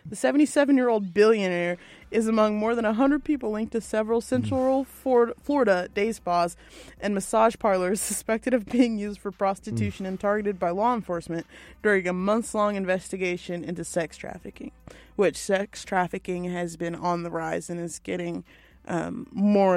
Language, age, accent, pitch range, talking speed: English, 20-39, American, 180-235 Hz, 150 wpm